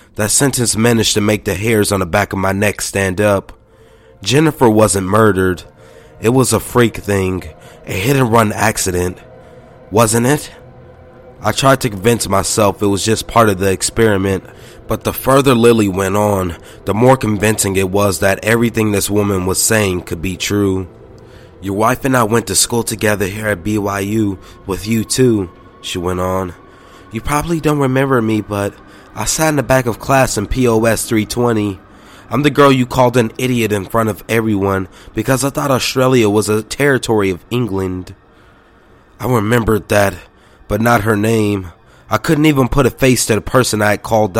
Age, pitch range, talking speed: 20-39, 100-125 Hz, 180 wpm